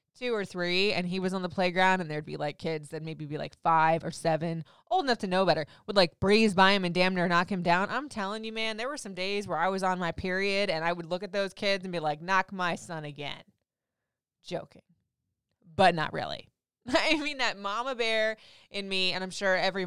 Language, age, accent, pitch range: English, 20-39, American, 165-200 Hz